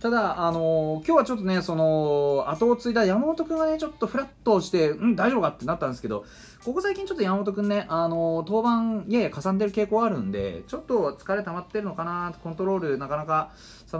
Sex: male